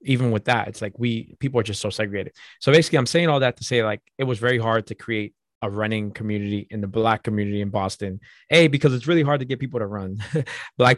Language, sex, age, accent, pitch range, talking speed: English, male, 20-39, American, 105-125 Hz, 250 wpm